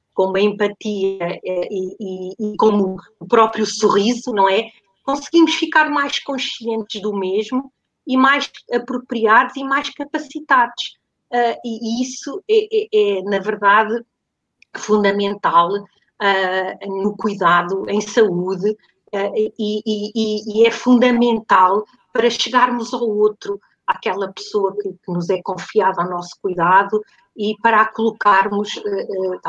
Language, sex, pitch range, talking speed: Portuguese, female, 200-255 Hz, 120 wpm